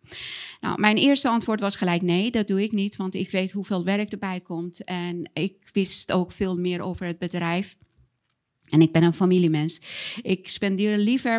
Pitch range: 180-215 Hz